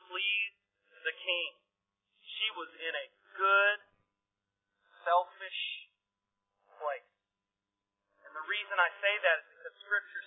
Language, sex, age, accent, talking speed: English, male, 40-59, American, 110 wpm